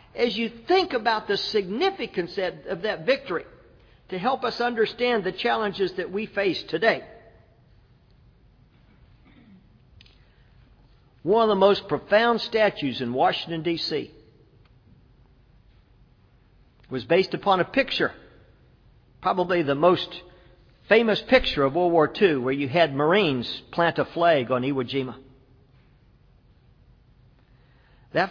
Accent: American